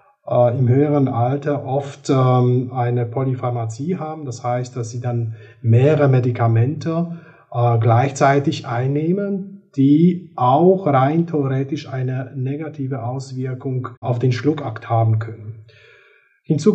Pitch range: 125-150 Hz